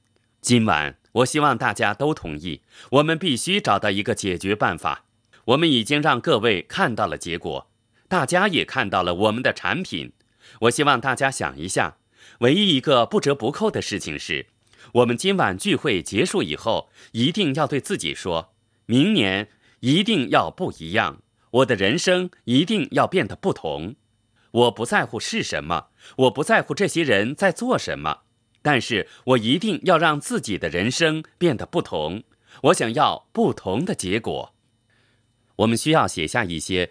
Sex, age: male, 30-49